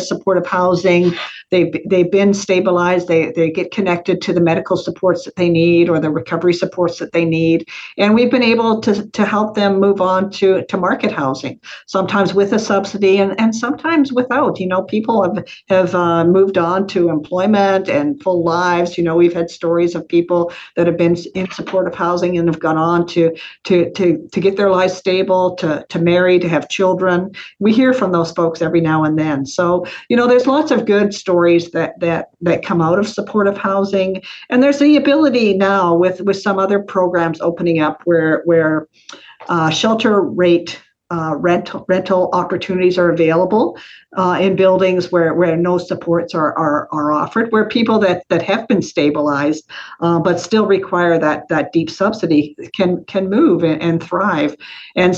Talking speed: 185 wpm